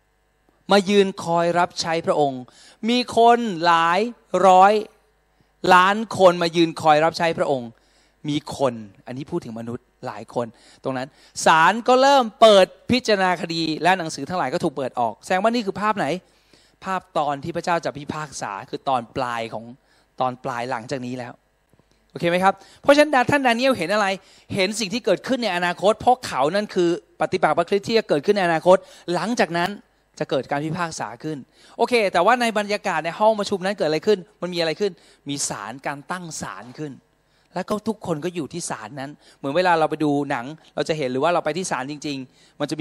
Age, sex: 20-39, male